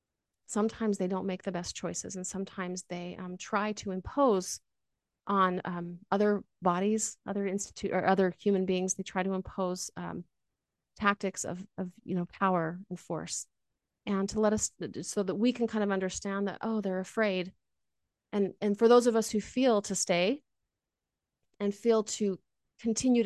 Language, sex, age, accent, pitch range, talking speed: English, female, 30-49, American, 180-210 Hz, 170 wpm